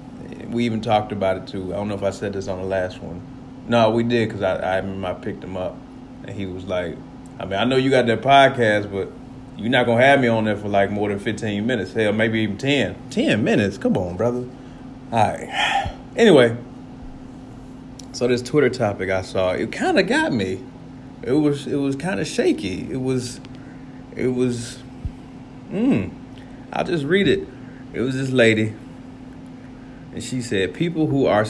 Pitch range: 105-130 Hz